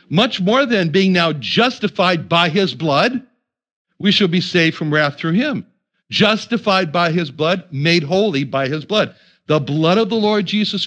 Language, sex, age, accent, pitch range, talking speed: English, male, 60-79, American, 145-200 Hz, 175 wpm